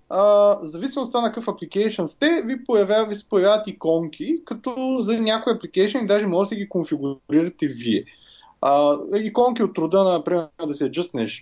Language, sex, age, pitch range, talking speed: Bulgarian, male, 20-39, 160-220 Hz, 170 wpm